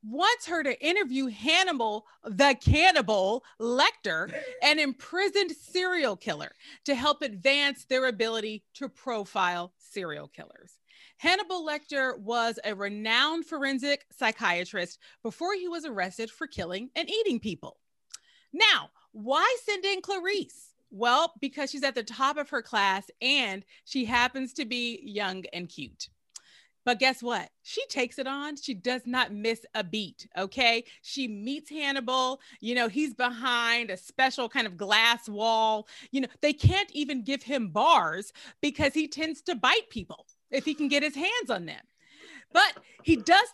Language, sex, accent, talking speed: English, female, American, 155 wpm